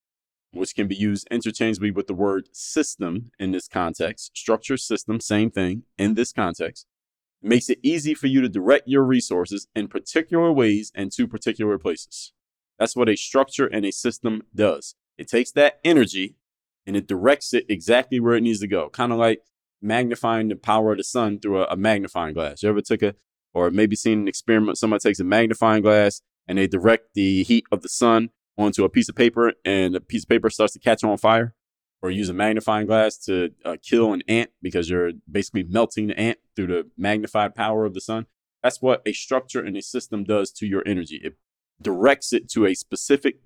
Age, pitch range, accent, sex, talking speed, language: 20-39, 100-120 Hz, American, male, 205 wpm, English